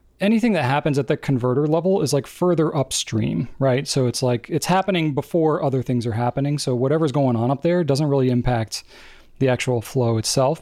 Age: 30-49